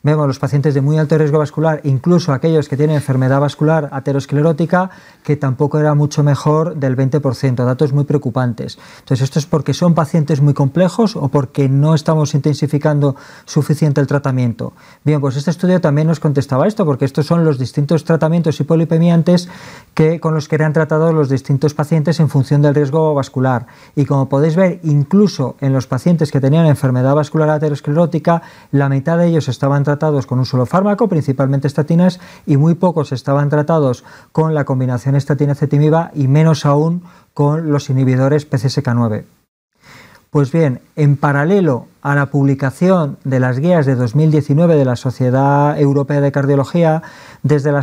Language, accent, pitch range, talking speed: English, Spanish, 140-160 Hz, 165 wpm